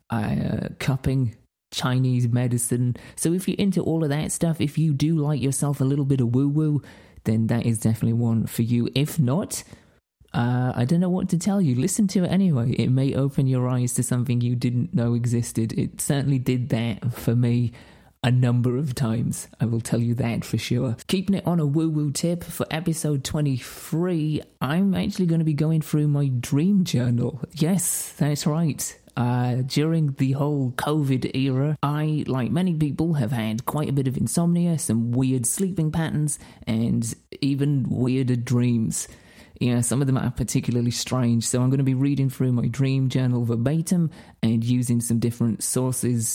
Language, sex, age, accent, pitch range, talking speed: English, male, 30-49, British, 120-155 Hz, 185 wpm